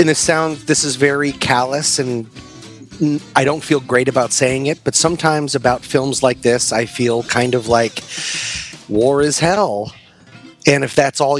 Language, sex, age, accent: English, male, 30-49, American